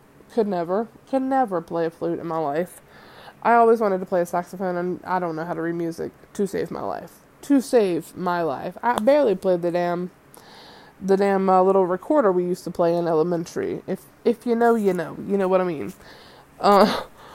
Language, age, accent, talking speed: English, 20-39, American, 210 wpm